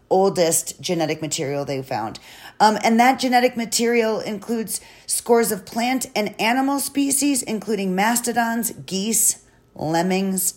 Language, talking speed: English, 120 wpm